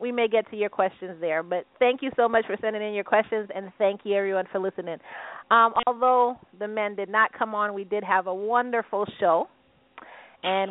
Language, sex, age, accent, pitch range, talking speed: English, female, 40-59, American, 195-245 Hz, 215 wpm